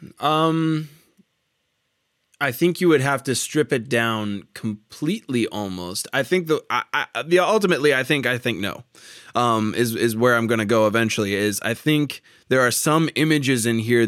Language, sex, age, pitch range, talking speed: English, male, 20-39, 105-140 Hz, 170 wpm